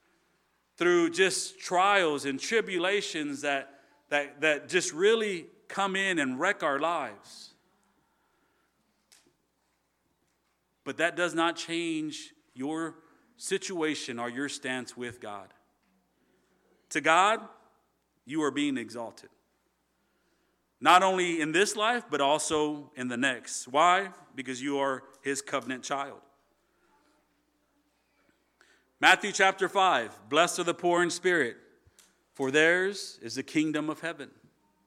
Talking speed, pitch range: 115 wpm, 145-205 Hz